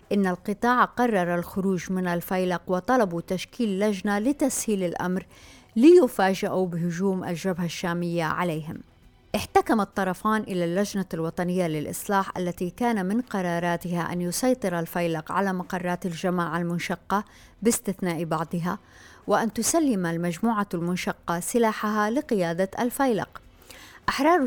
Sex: female